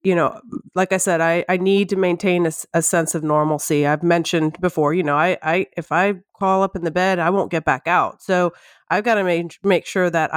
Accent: American